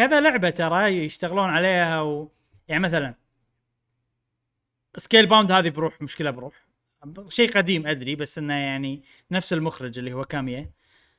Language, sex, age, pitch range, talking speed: Arabic, male, 20-39, 130-185 Hz, 135 wpm